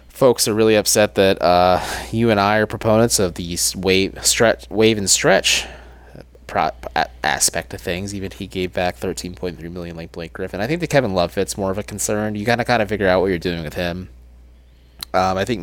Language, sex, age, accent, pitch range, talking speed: English, male, 20-39, American, 80-110 Hz, 210 wpm